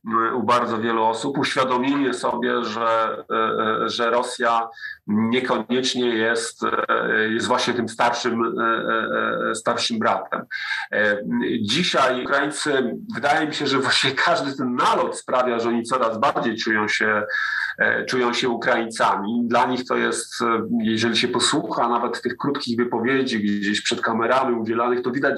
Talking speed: 130 wpm